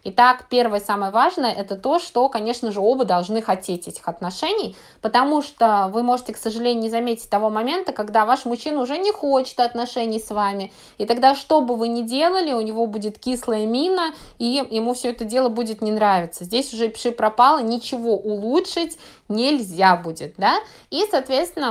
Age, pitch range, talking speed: 20-39, 210-260 Hz, 175 wpm